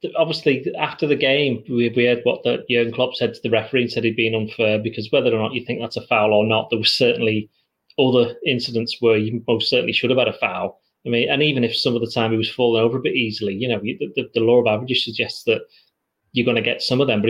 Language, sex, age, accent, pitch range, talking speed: English, male, 30-49, British, 115-140 Hz, 270 wpm